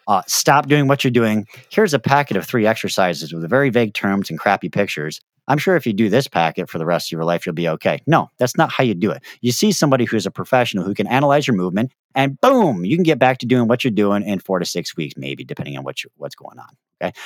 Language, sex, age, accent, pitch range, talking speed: English, male, 40-59, American, 100-135 Hz, 270 wpm